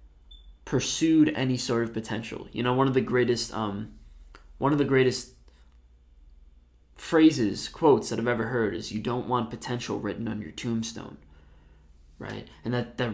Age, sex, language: 20-39, male, English